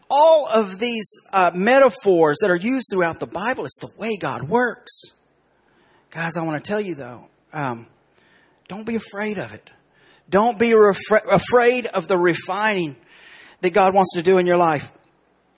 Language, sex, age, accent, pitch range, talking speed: English, male, 30-49, American, 175-235 Hz, 170 wpm